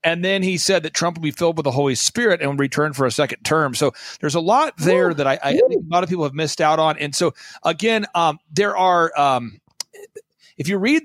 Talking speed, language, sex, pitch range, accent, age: 250 wpm, English, male, 145-180 Hz, American, 40-59